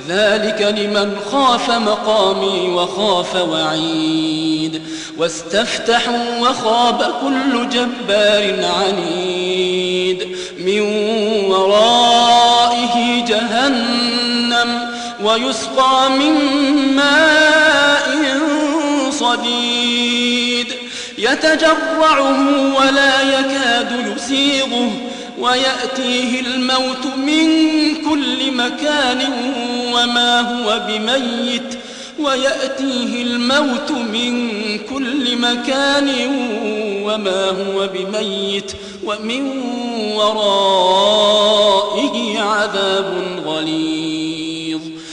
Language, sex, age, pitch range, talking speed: Arabic, male, 40-59, 195-255 Hz, 55 wpm